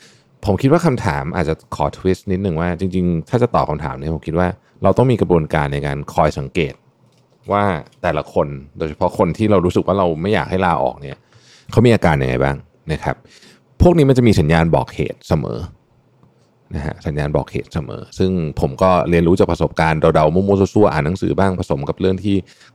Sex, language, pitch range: male, Thai, 80-100 Hz